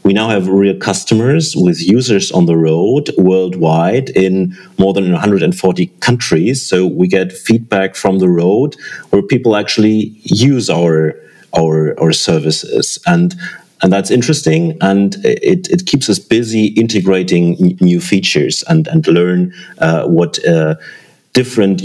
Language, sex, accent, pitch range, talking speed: English, male, German, 90-120 Hz, 145 wpm